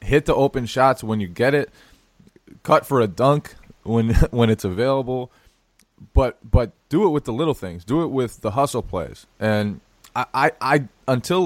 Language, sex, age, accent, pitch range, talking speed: English, male, 20-39, American, 95-125 Hz, 185 wpm